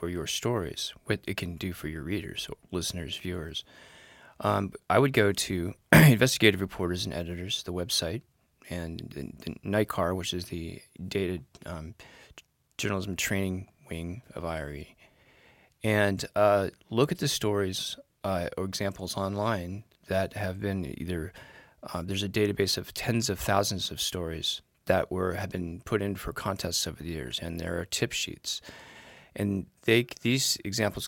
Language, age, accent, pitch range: English, 30-49, American, 90-105 Hz